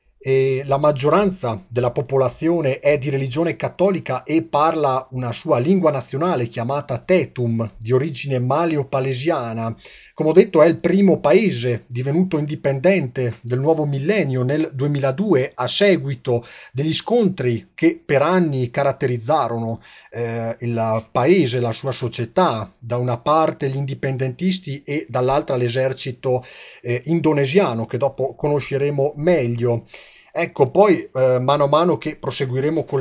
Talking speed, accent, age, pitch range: 130 wpm, native, 40-59, 125-155 Hz